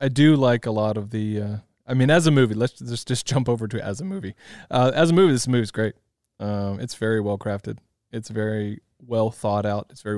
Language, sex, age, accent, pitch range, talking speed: English, male, 20-39, American, 105-120 Hz, 250 wpm